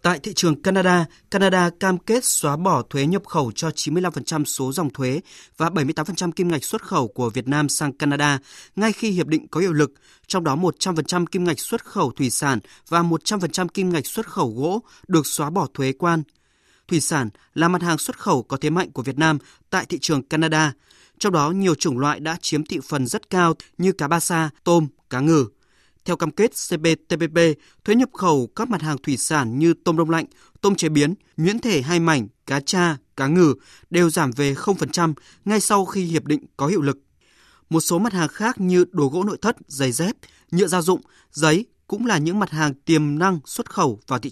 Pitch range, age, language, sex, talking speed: 145-185 Hz, 20-39, Vietnamese, male, 210 wpm